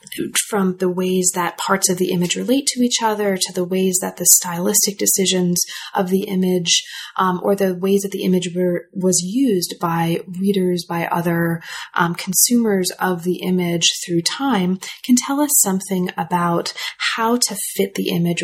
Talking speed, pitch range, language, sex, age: 175 wpm, 175-215 Hz, English, female, 20-39